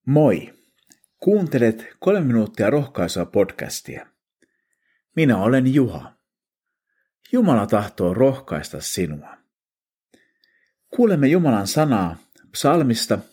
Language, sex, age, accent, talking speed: Finnish, male, 50-69, native, 75 wpm